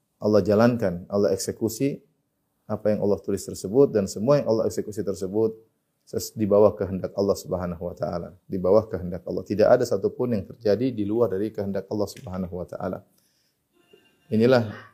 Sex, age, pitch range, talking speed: male, 30-49, 95-110 Hz, 140 wpm